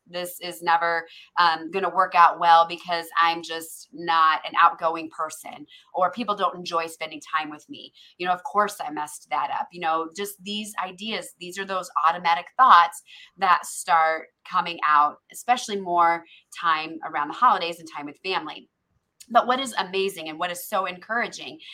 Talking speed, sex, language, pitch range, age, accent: 175 wpm, female, English, 165-205 Hz, 30-49, American